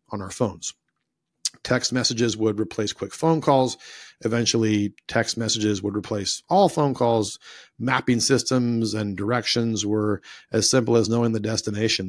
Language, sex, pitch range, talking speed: English, male, 100-115 Hz, 145 wpm